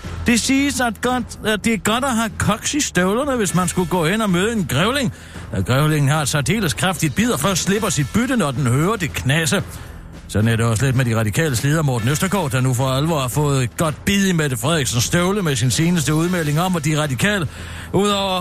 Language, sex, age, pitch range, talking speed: Danish, male, 60-79, 125-185 Hz, 235 wpm